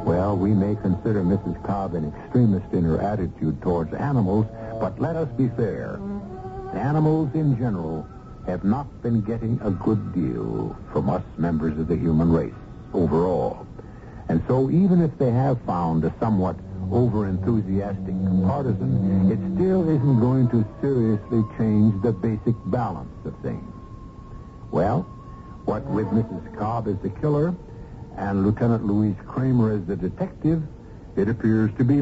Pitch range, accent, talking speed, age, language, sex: 95-130 Hz, American, 145 wpm, 70-89, English, male